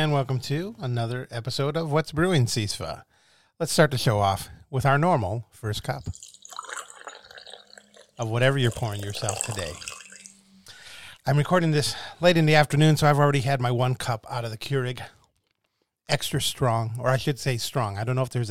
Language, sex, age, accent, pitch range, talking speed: English, male, 40-59, American, 105-135 Hz, 180 wpm